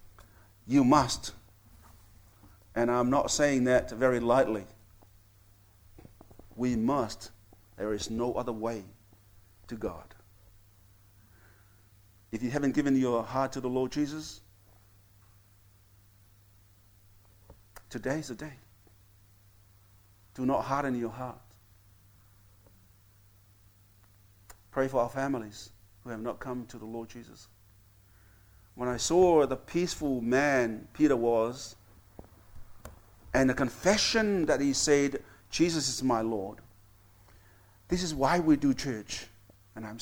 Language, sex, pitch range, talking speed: English, male, 100-130 Hz, 110 wpm